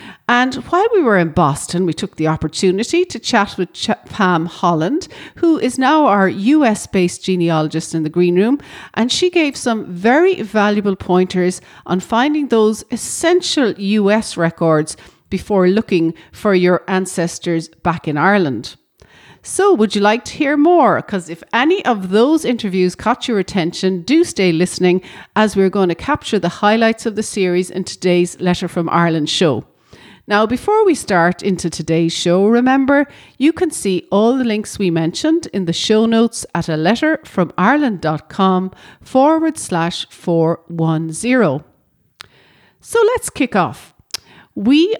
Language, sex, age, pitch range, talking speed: English, female, 40-59, 175-245 Hz, 150 wpm